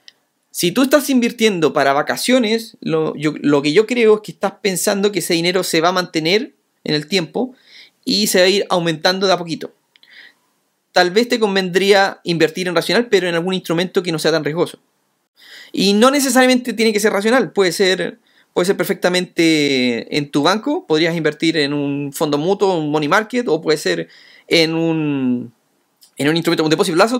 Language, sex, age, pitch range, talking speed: Spanish, male, 30-49, 165-230 Hz, 195 wpm